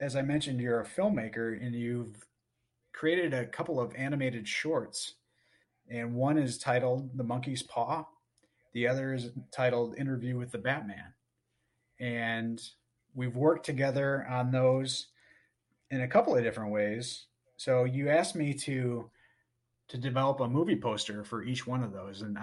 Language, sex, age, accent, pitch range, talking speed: English, male, 30-49, American, 115-130 Hz, 155 wpm